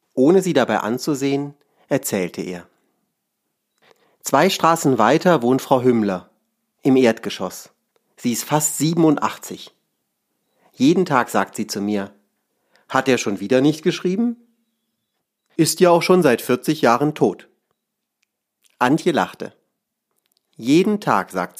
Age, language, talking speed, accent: 40-59, German, 120 wpm, German